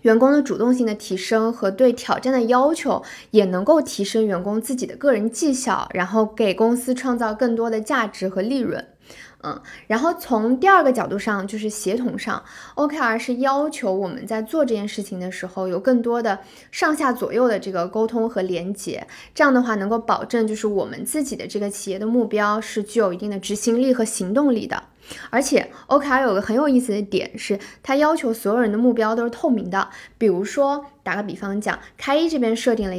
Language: Chinese